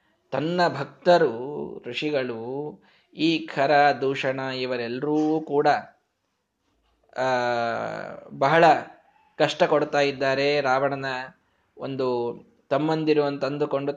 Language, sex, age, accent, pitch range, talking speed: Kannada, male, 20-39, native, 135-170 Hz, 65 wpm